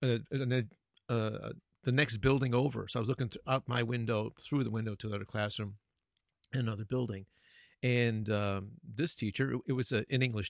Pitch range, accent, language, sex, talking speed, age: 100-130 Hz, American, English, male, 190 wpm, 40-59